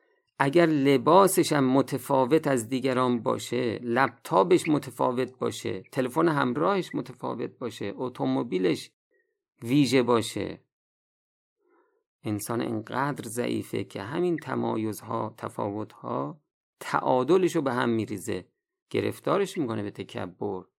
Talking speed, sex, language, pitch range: 90 wpm, male, Persian, 115-180 Hz